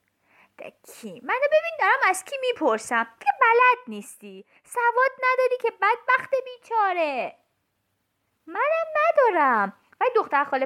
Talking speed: 105 wpm